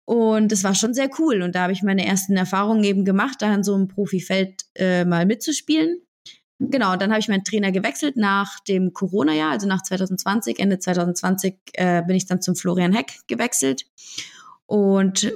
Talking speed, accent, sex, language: 190 wpm, German, female, German